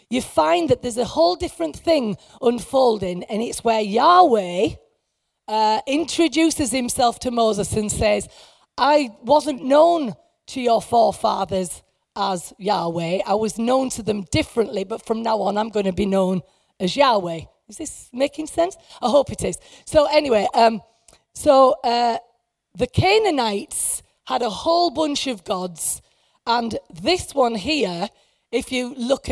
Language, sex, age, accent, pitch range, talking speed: English, female, 30-49, British, 205-270 Hz, 150 wpm